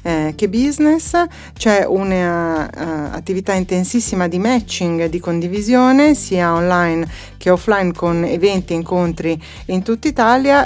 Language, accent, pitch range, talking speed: Italian, native, 170-205 Hz, 125 wpm